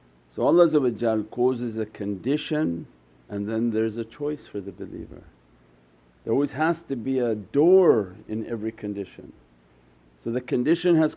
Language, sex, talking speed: English, male, 145 wpm